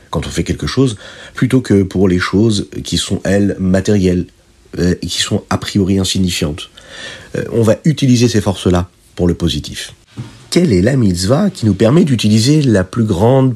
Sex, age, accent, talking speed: male, 50-69, French, 180 wpm